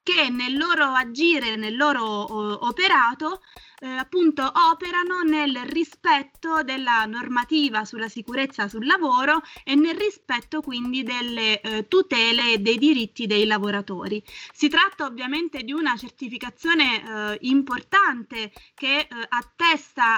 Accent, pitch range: native, 225-310 Hz